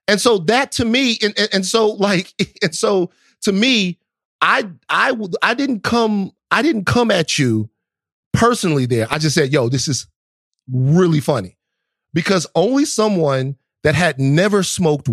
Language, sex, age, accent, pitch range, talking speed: English, male, 30-49, American, 125-185 Hz, 165 wpm